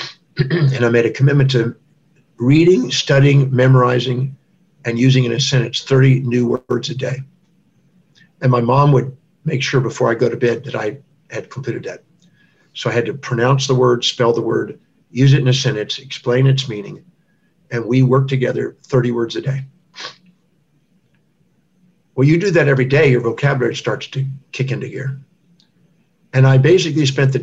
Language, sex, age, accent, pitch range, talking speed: English, male, 50-69, American, 125-165 Hz, 175 wpm